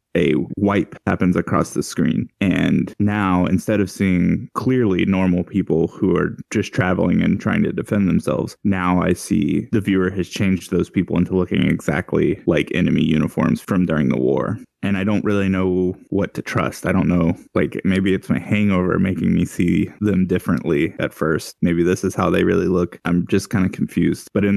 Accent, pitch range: American, 90-105 Hz